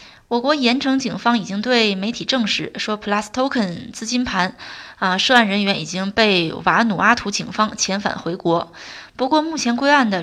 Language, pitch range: Chinese, 200-260 Hz